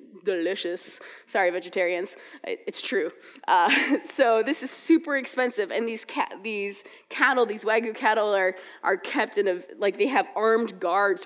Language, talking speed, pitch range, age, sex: English, 155 wpm, 195-265 Hz, 20-39, female